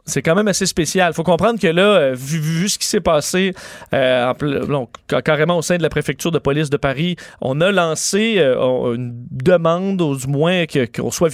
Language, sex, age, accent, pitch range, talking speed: French, male, 30-49, Canadian, 145-185 Hz, 230 wpm